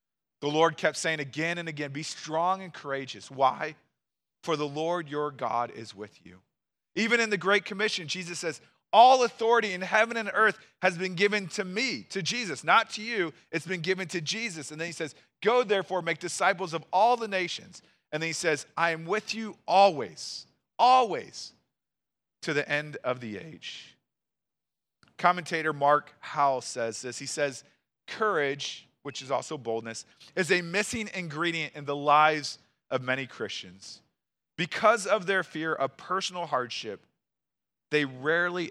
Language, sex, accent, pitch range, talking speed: English, male, American, 130-185 Hz, 165 wpm